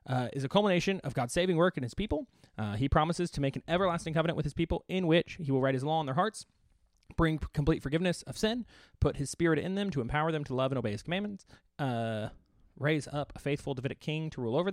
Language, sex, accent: English, male, American